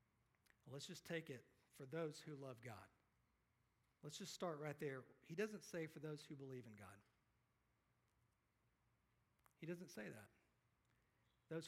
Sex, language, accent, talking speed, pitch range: male, English, American, 145 wpm, 115-155 Hz